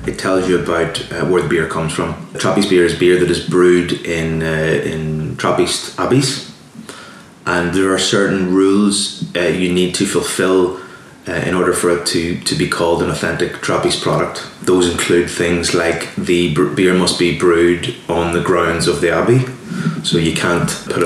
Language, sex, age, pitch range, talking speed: English, male, 20-39, 85-95 Hz, 185 wpm